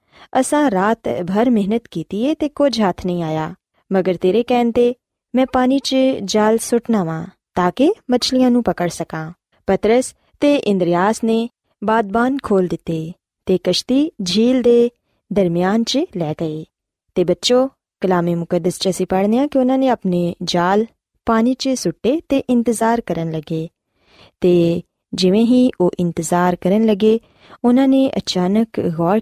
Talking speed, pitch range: 130 wpm, 180-255 Hz